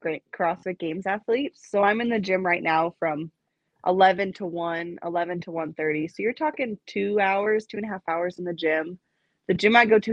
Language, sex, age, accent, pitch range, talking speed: English, female, 20-39, American, 170-210 Hz, 215 wpm